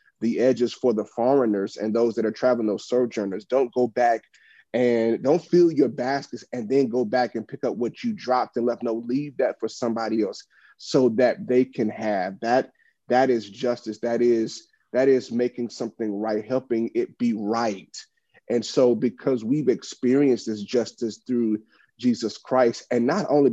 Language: English